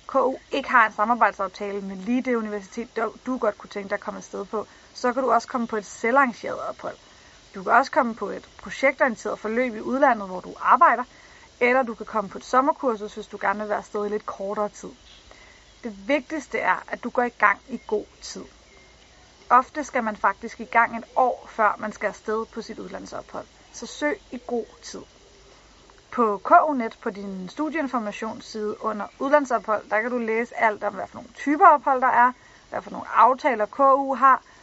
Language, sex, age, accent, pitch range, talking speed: Danish, female, 30-49, native, 210-255 Hz, 200 wpm